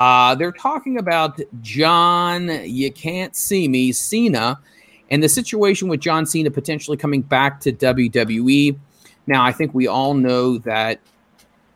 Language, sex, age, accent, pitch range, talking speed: English, male, 30-49, American, 120-155 Hz, 145 wpm